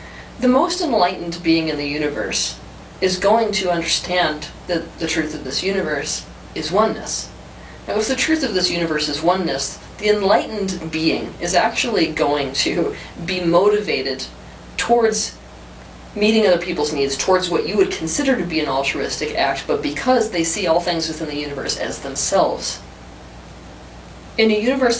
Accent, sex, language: American, female, English